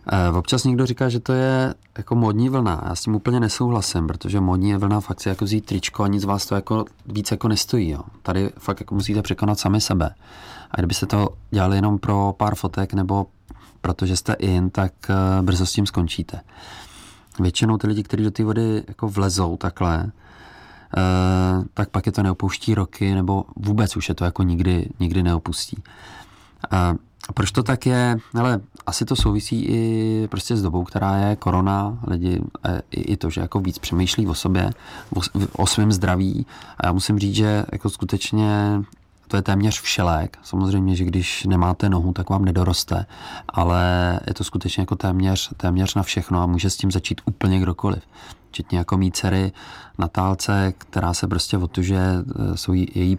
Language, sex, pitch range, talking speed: Czech, male, 90-105 Hz, 175 wpm